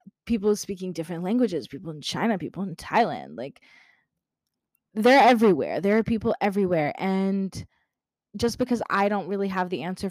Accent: American